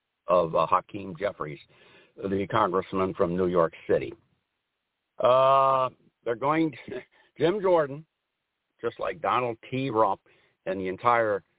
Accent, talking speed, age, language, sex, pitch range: American, 120 wpm, 60-79, English, male, 115-150 Hz